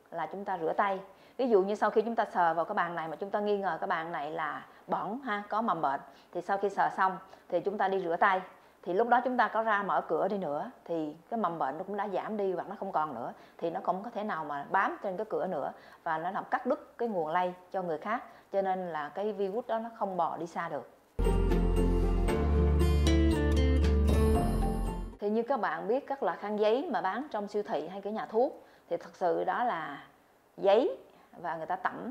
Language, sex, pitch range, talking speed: Vietnamese, female, 175-220 Hz, 245 wpm